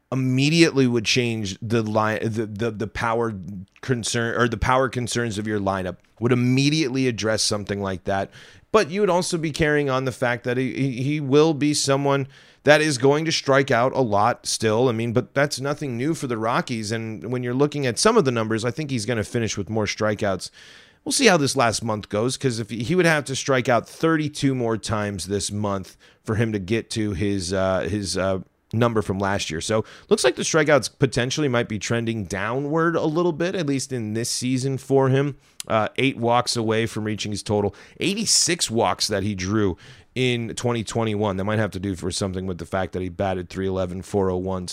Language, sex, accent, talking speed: English, male, American, 210 wpm